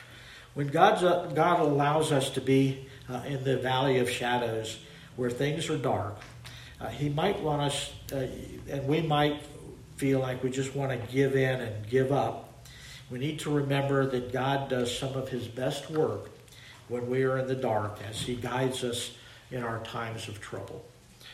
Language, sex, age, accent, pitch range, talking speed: English, male, 50-69, American, 120-140 Hz, 180 wpm